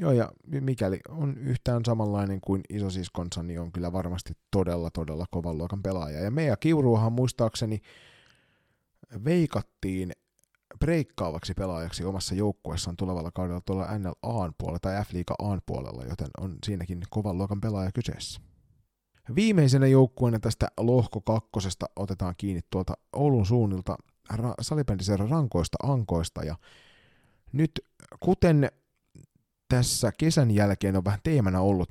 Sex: male